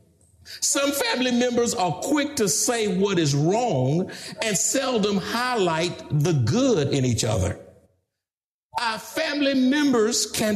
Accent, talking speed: American, 125 wpm